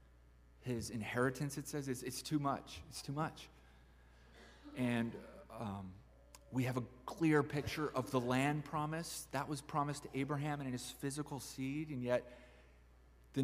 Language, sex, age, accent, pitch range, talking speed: English, male, 30-49, American, 115-145 Hz, 155 wpm